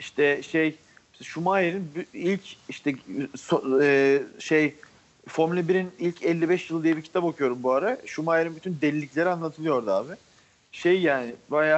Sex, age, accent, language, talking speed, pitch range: male, 40-59, native, Turkish, 130 wpm, 150-185 Hz